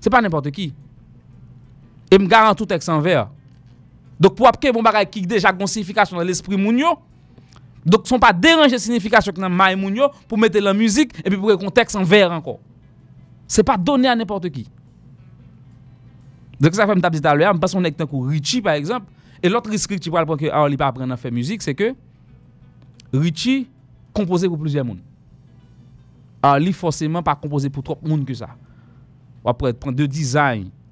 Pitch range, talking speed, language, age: 130-185 Hz, 195 wpm, English, 30-49